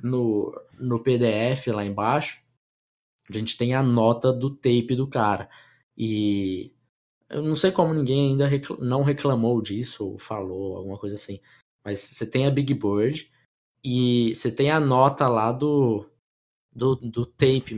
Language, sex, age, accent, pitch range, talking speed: Portuguese, male, 20-39, Brazilian, 110-140 Hz, 150 wpm